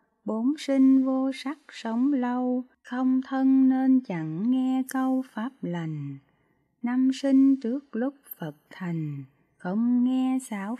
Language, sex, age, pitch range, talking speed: Vietnamese, female, 20-39, 165-260 Hz, 130 wpm